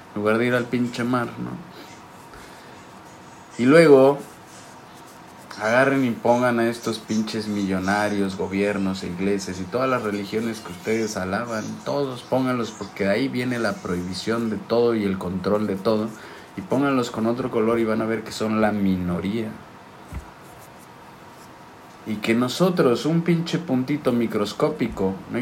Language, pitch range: Spanish, 105-125 Hz